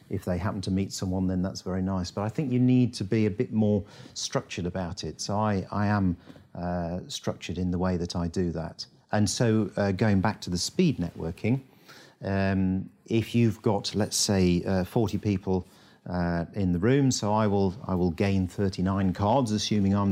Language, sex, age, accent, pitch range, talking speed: English, male, 50-69, British, 90-105 Hz, 205 wpm